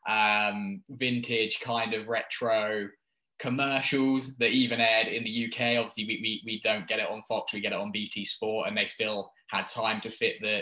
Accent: British